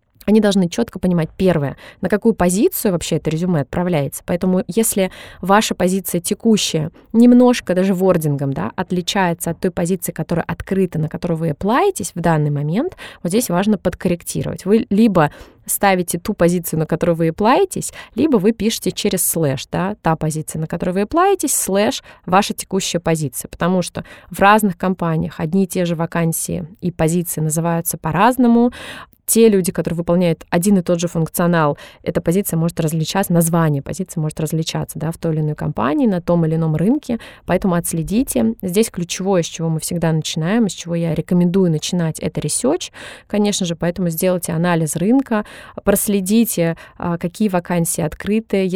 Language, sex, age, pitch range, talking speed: Russian, female, 20-39, 165-200 Hz, 160 wpm